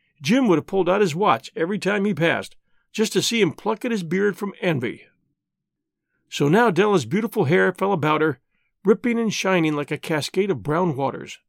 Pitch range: 155-210 Hz